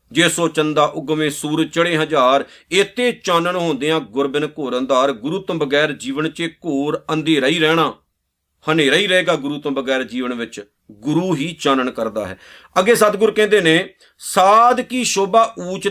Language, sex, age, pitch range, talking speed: Punjabi, male, 40-59, 145-190 Hz, 160 wpm